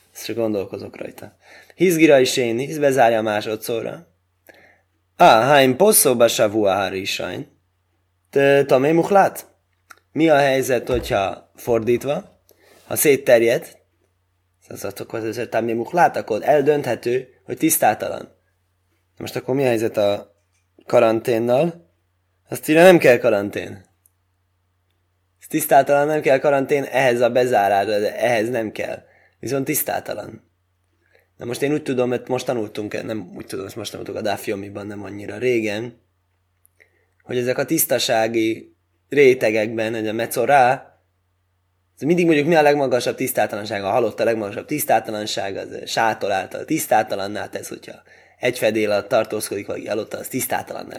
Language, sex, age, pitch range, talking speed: Hungarian, male, 20-39, 90-140 Hz, 135 wpm